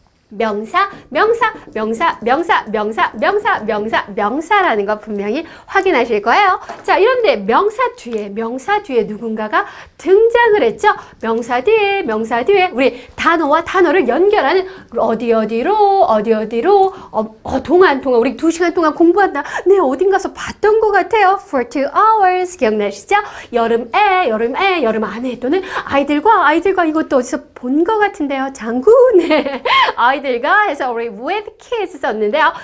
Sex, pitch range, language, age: female, 245-405 Hz, Korean, 40-59